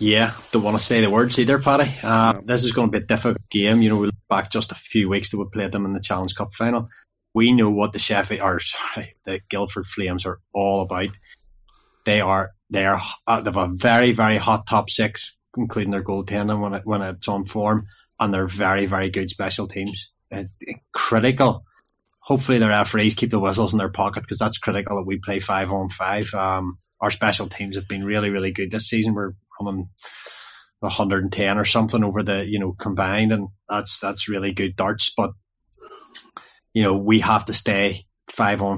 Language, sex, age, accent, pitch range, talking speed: English, male, 20-39, Irish, 100-110 Hz, 205 wpm